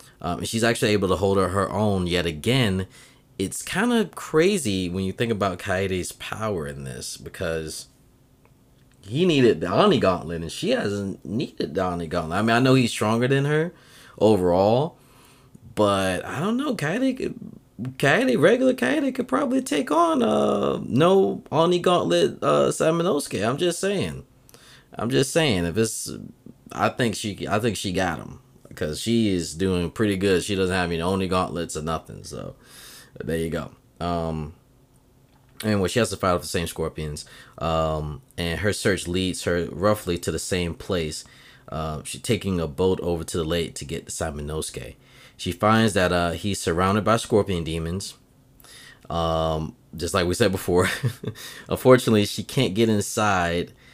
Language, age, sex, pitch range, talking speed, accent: English, 30-49, male, 85-120 Hz, 170 wpm, American